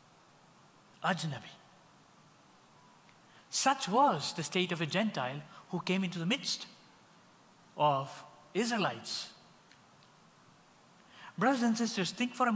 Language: English